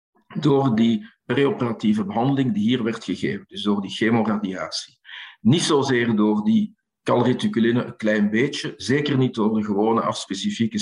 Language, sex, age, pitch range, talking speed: Dutch, male, 50-69, 110-140 Hz, 145 wpm